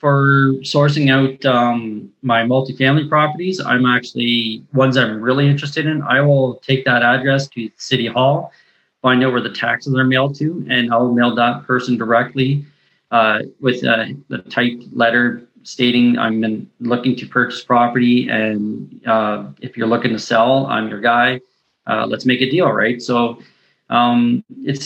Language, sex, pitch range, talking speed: English, male, 115-135 Hz, 160 wpm